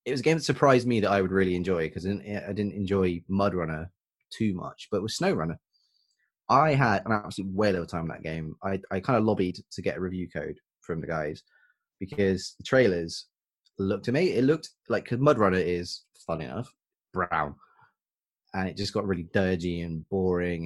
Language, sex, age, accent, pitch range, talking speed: English, male, 20-39, British, 90-115 Hz, 200 wpm